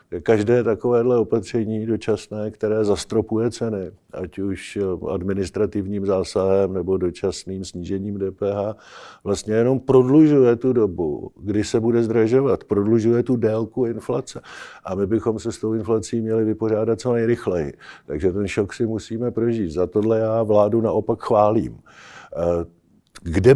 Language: Czech